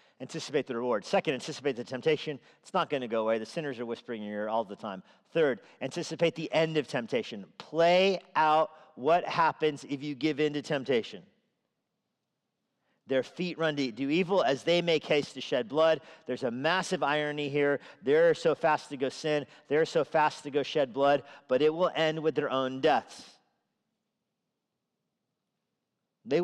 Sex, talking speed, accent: male, 180 wpm, American